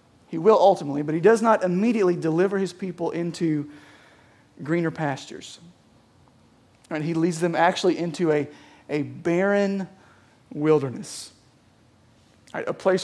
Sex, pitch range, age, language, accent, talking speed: male, 145-185 Hz, 40-59, English, American, 115 wpm